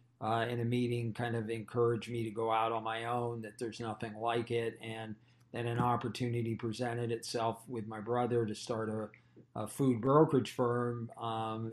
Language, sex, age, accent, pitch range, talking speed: English, male, 40-59, American, 115-125 Hz, 185 wpm